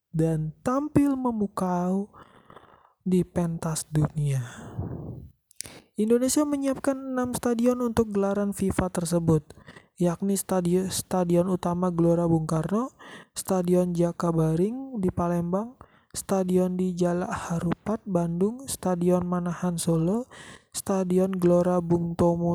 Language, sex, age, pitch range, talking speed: Indonesian, male, 20-39, 165-200 Hz, 100 wpm